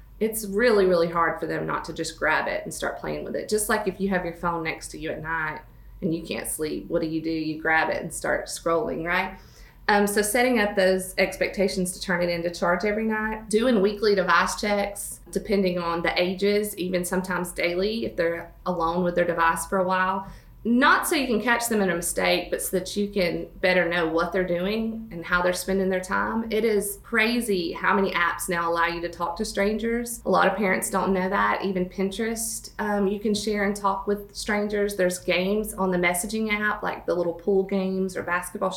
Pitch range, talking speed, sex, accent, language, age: 175-205 Hz, 225 wpm, female, American, English, 30-49